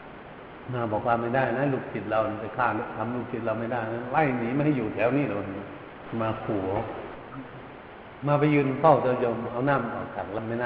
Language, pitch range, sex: Thai, 110-135 Hz, male